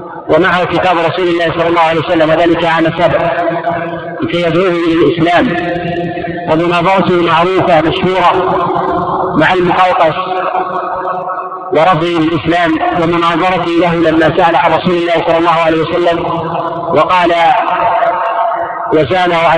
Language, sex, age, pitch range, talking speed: Arabic, male, 50-69, 170-190 Hz, 105 wpm